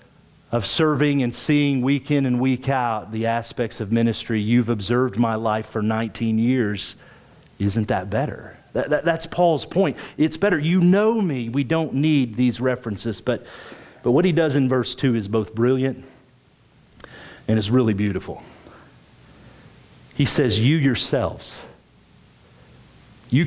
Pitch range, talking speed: 110-140 Hz, 145 wpm